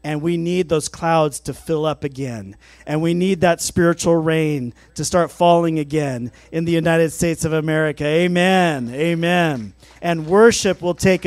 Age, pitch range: 40-59, 150-185 Hz